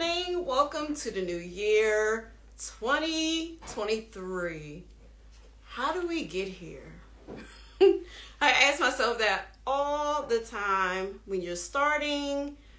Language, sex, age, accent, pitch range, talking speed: English, female, 30-49, American, 200-320 Hz, 100 wpm